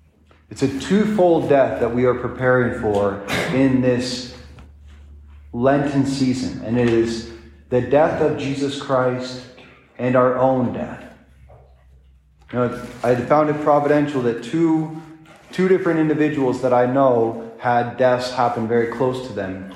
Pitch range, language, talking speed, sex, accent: 110-135 Hz, English, 135 wpm, male, American